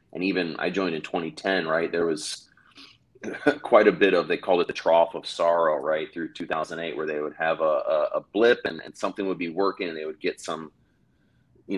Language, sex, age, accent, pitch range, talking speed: English, male, 30-49, American, 80-95 Hz, 220 wpm